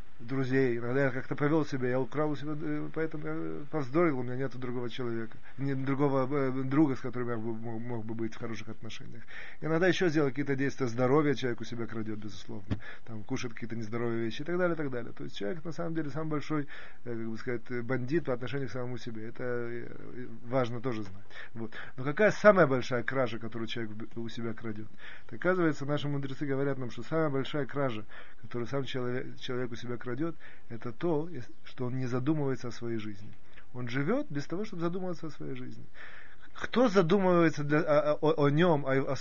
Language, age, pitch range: Russian, 30-49, 120-155 Hz